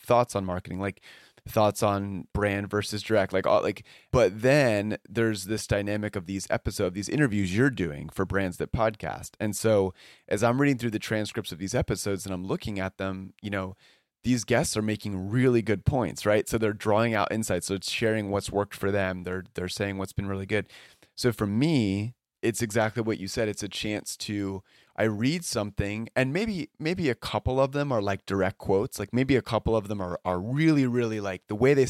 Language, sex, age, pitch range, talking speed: English, male, 30-49, 100-120 Hz, 215 wpm